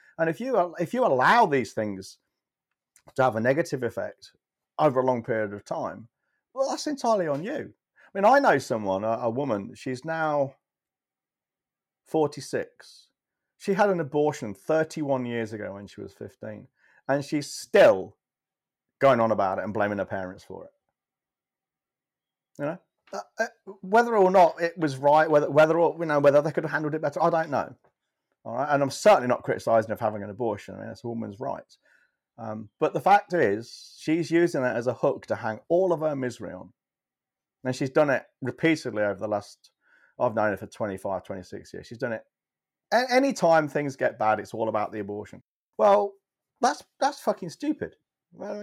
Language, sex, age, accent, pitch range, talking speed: English, male, 40-59, British, 115-185 Hz, 190 wpm